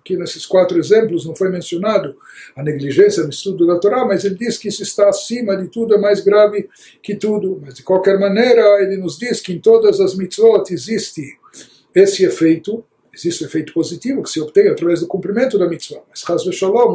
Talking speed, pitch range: 200 wpm, 170-220 Hz